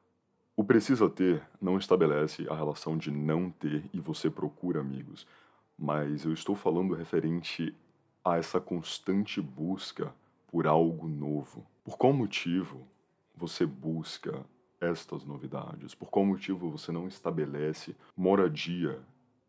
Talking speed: 125 wpm